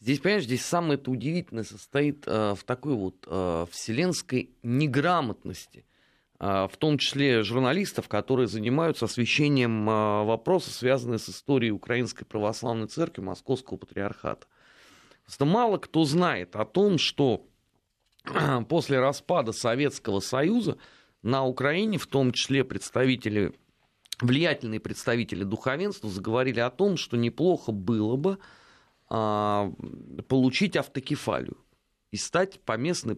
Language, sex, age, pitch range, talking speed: Russian, male, 30-49, 110-145 Hz, 115 wpm